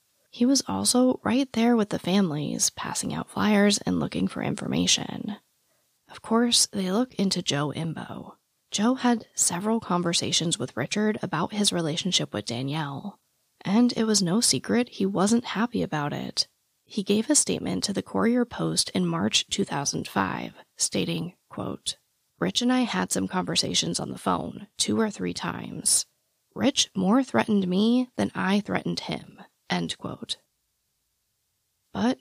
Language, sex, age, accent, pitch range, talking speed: English, female, 20-39, American, 160-225 Hz, 145 wpm